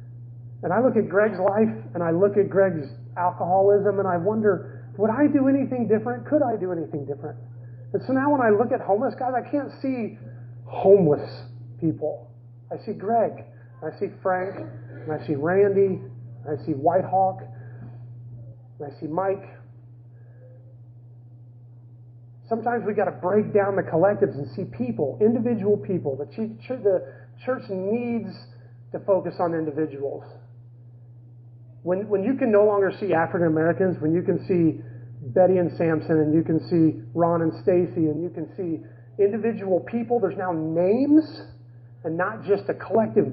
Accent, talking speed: American, 160 wpm